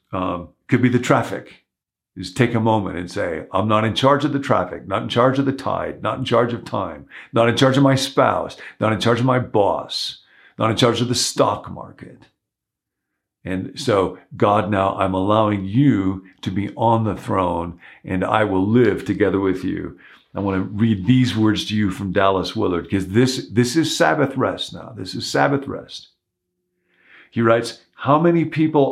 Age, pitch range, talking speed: 50-69, 100-135 Hz, 195 wpm